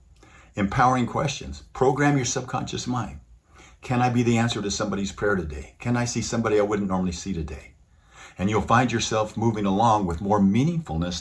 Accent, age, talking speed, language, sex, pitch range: American, 50-69, 175 wpm, English, male, 80-110 Hz